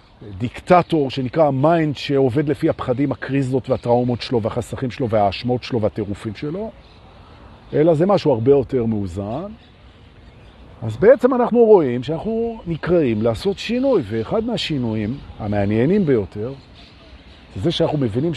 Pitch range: 120-175 Hz